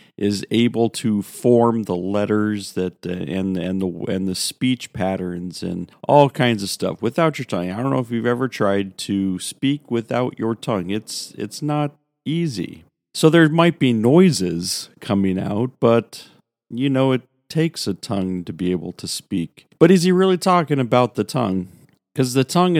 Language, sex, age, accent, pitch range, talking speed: English, male, 40-59, American, 95-135 Hz, 180 wpm